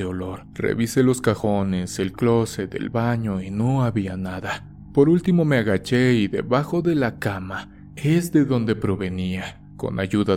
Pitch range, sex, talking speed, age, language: 95-130 Hz, male, 155 wpm, 30-49, Spanish